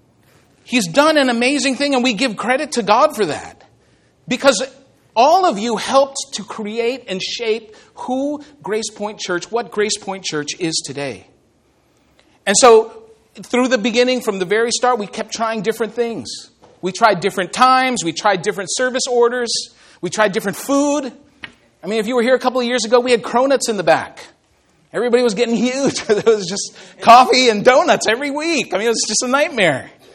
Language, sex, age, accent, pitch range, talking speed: English, male, 40-59, American, 205-255 Hz, 190 wpm